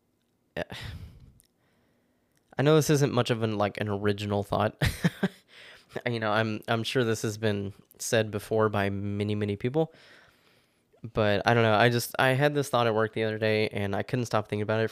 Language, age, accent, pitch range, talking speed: English, 10-29, American, 105-120 Hz, 190 wpm